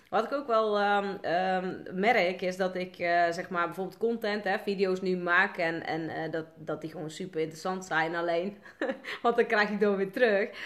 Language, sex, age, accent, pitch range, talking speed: Dutch, female, 30-49, Dutch, 170-225 Hz, 210 wpm